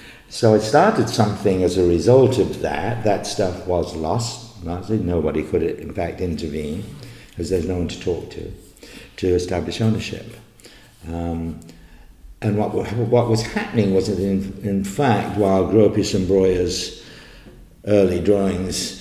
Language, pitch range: English, 85-100 Hz